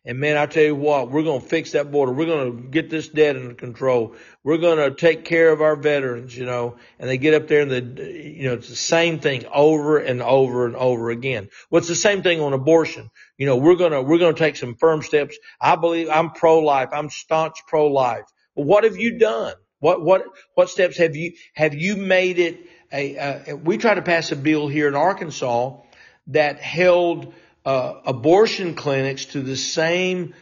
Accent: American